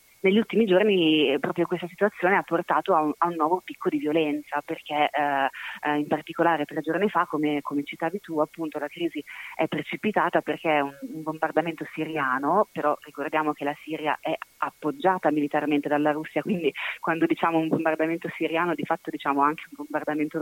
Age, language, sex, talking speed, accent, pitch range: 30-49, Italian, female, 175 wpm, native, 150-170 Hz